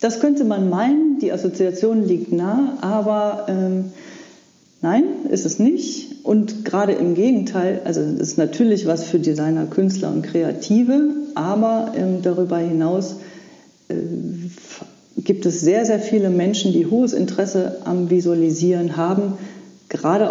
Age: 40-59